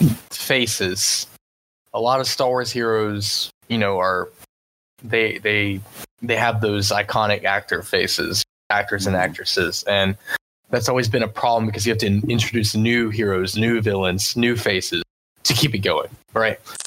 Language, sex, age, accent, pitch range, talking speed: English, male, 20-39, American, 100-120 Hz, 155 wpm